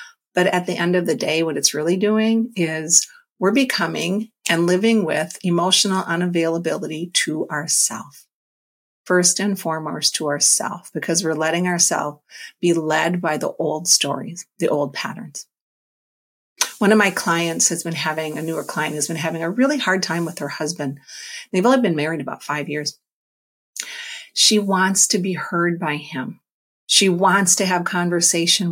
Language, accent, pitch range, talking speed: English, American, 165-210 Hz, 165 wpm